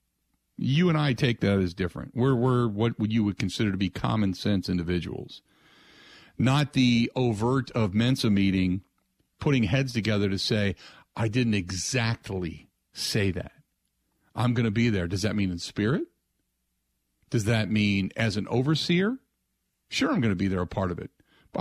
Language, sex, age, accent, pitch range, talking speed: English, male, 50-69, American, 95-125 Hz, 170 wpm